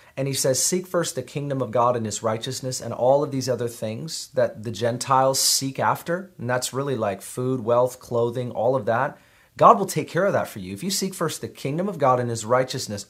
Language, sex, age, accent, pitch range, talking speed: English, male, 30-49, American, 120-150 Hz, 240 wpm